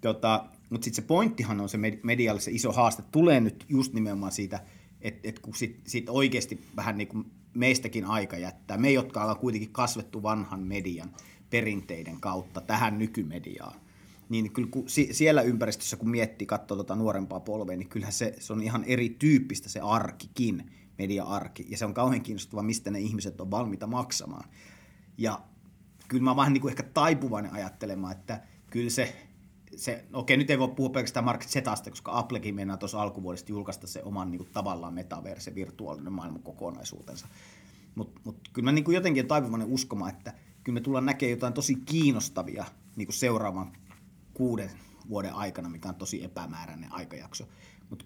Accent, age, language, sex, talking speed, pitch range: native, 30-49, Finnish, male, 155 wpm, 100-125 Hz